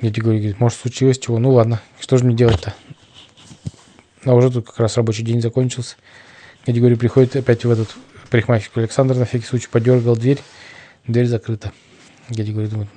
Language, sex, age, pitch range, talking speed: Russian, male, 20-39, 115-145 Hz, 165 wpm